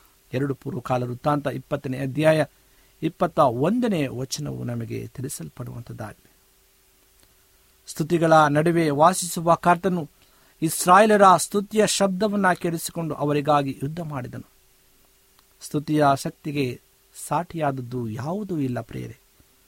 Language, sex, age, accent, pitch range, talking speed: Kannada, male, 50-69, native, 130-175 Hz, 80 wpm